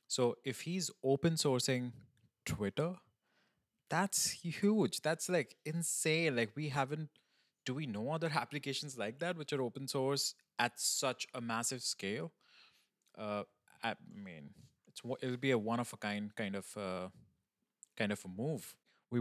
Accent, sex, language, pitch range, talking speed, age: Indian, male, English, 100-140 Hz, 155 wpm, 20-39